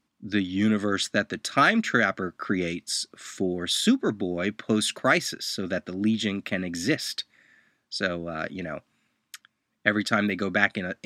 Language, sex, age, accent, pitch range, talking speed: English, male, 30-49, American, 95-115 Hz, 135 wpm